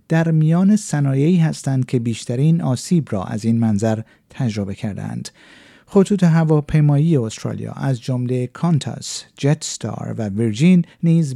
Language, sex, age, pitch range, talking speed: Persian, male, 50-69, 125-170 Hz, 125 wpm